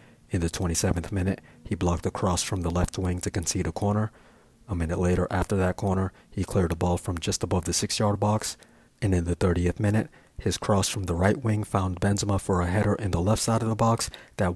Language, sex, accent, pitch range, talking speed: English, male, American, 90-105 Hz, 230 wpm